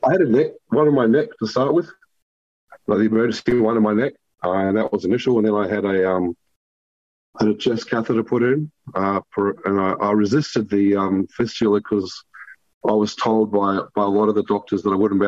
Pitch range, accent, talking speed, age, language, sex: 95-115 Hz, Australian, 230 wpm, 30-49, English, male